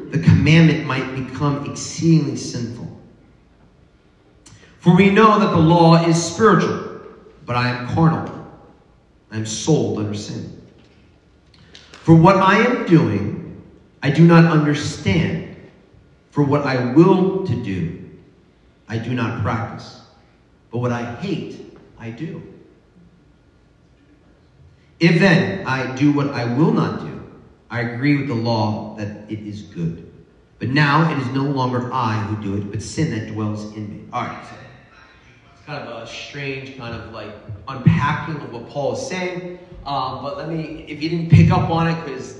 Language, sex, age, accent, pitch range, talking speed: English, male, 40-59, American, 120-165 Hz, 155 wpm